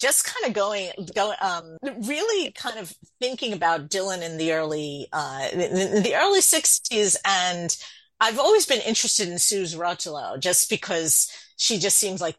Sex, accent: female, American